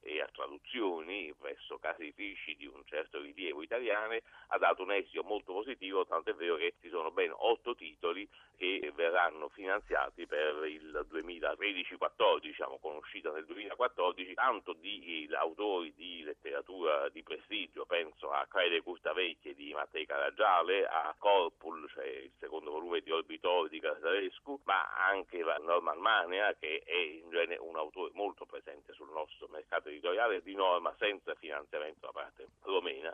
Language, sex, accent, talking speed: Italian, male, native, 160 wpm